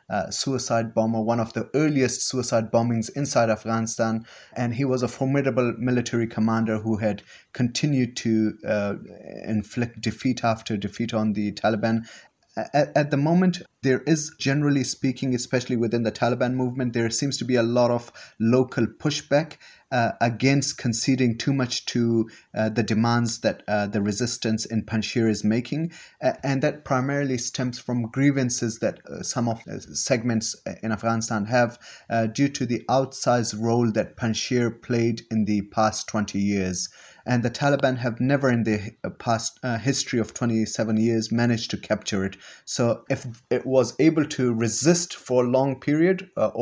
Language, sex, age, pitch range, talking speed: English, male, 30-49, 110-130 Hz, 165 wpm